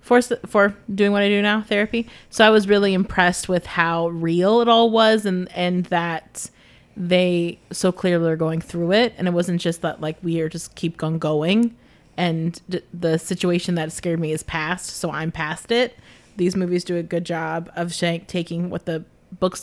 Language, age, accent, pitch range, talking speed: English, 30-49, American, 170-205 Hz, 200 wpm